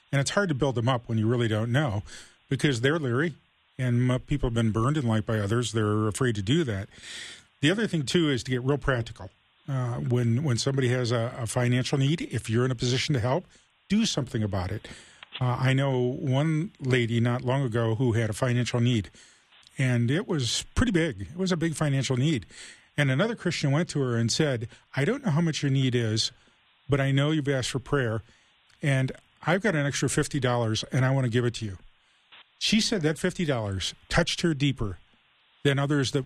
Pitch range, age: 120-150 Hz, 40-59